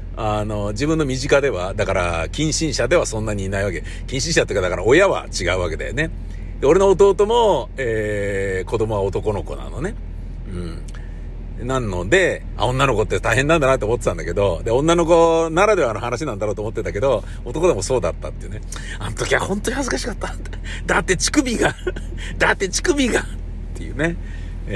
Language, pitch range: Japanese, 100-140 Hz